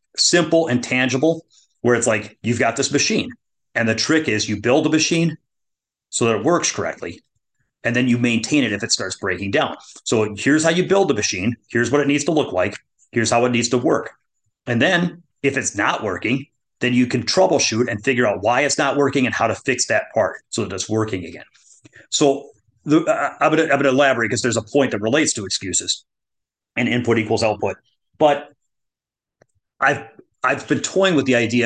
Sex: male